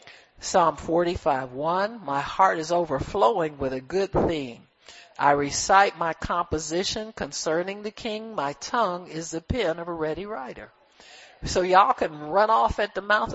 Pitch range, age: 145-190 Hz, 60-79